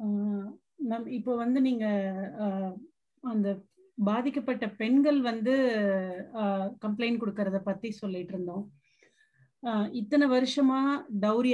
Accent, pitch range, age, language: native, 210-275 Hz, 30-49, Tamil